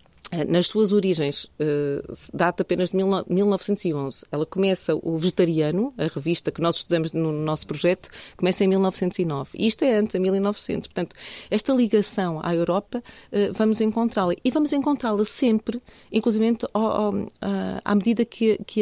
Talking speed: 135 wpm